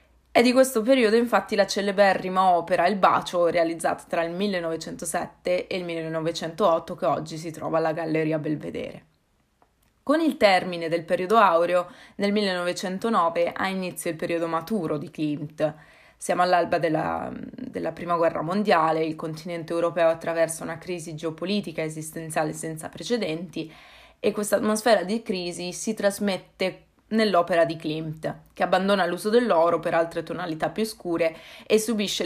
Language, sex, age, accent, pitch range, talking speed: Italian, female, 20-39, native, 165-205 Hz, 145 wpm